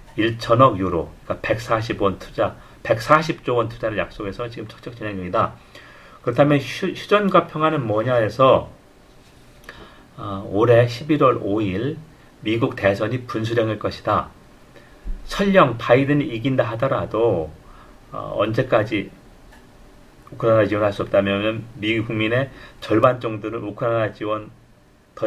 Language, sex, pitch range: Korean, male, 105-135 Hz